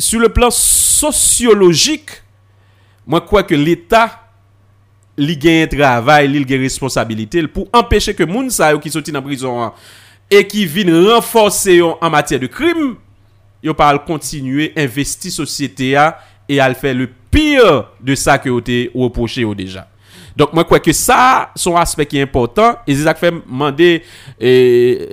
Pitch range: 130-210 Hz